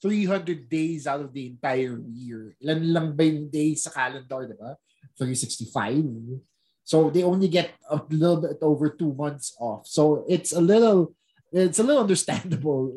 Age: 20-39